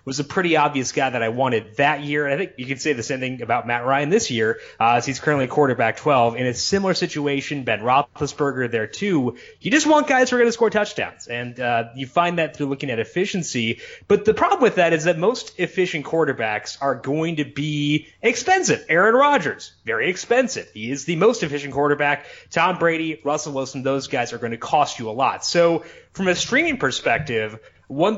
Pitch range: 135-185 Hz